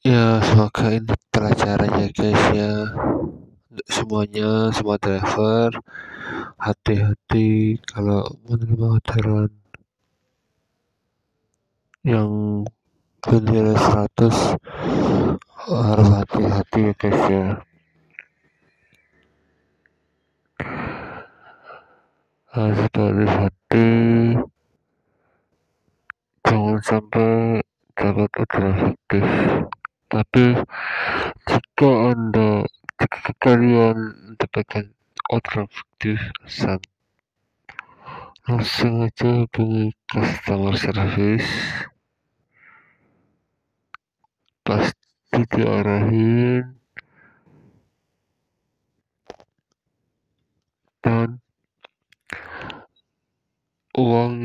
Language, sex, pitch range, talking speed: Indonesian, male, 105-115 Hz, 45 wpm